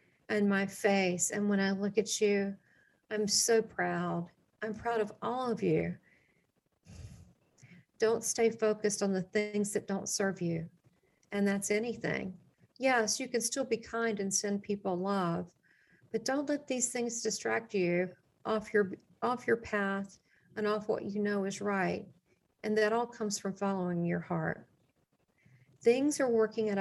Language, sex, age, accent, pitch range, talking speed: English, female, 50-69, American, 185-220 Hz, 160 wpm